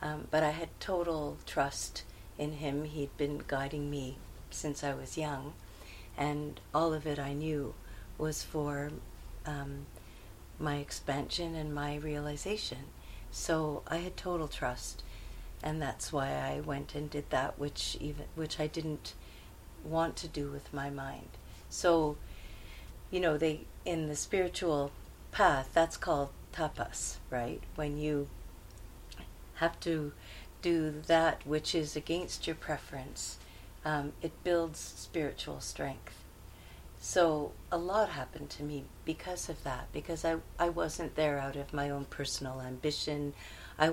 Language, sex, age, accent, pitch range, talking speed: English, female, 50-69, American, 135-160 Hz, 140 wpm